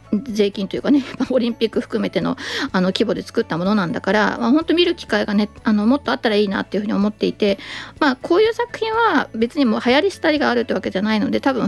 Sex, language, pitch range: female, Japanese, 195-260 Hz